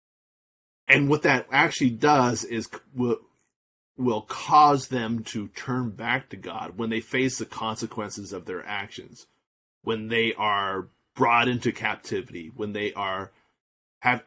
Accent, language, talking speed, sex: American, English, 140 wpm, male